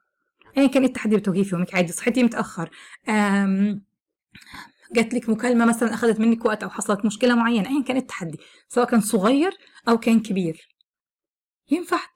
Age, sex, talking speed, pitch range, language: 20-39, female, 145 wpm, 210-265 Hz, Arabic